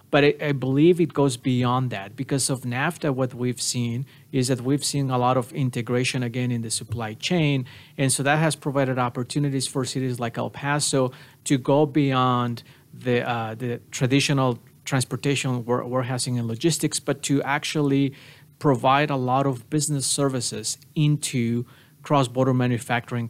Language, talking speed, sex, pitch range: English, 150 wpm, male, 125-145 Hz